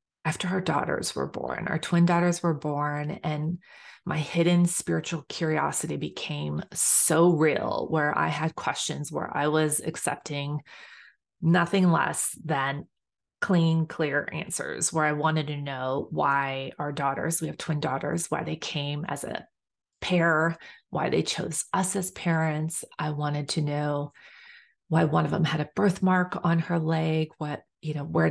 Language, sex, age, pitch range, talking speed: English, female, 30-49, 150-175 Hz, 155 wpm